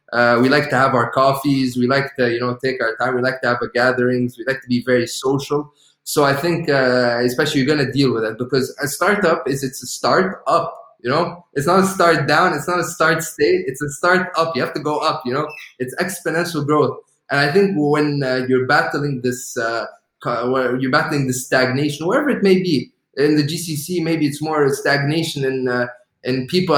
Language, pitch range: English, 130-165 Hz